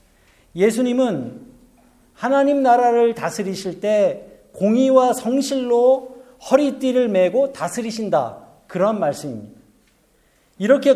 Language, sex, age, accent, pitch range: Korean, male, 50-69, native, 200-265 Hz